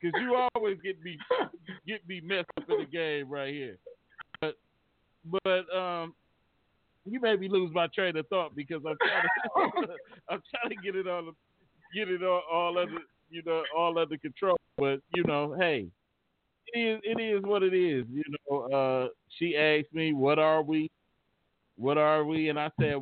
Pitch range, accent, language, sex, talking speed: 135-175 Hz, American, English, male, 175 wpm